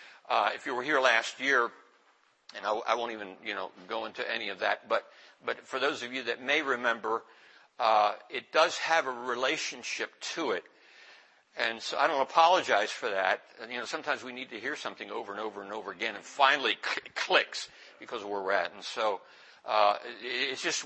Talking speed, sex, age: 210 wpm, male, 60-79